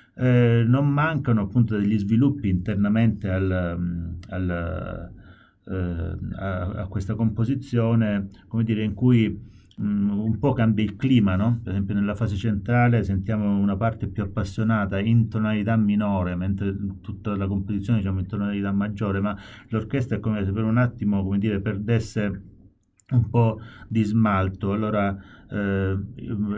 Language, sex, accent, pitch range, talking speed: Italian, male, native, 95-110 Hz, 125 wpm